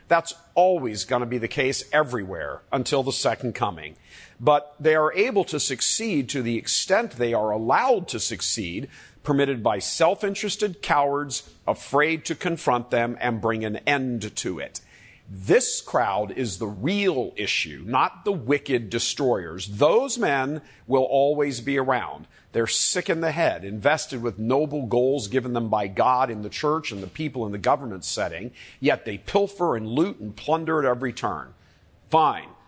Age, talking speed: 50-69, 165 wpm